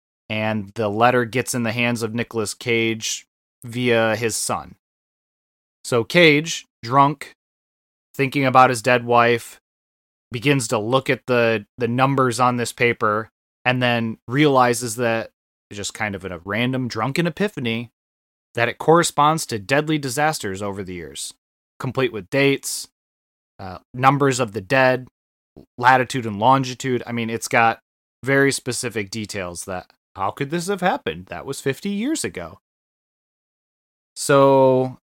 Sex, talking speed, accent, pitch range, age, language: male, 140 wpm, American, 105-135 Hz, 20-39, English